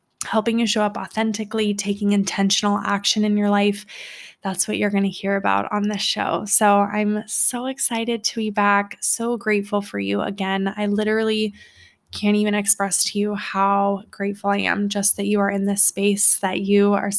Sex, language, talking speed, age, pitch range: female, English, 185 wpm, 20-39, 200-235 Hz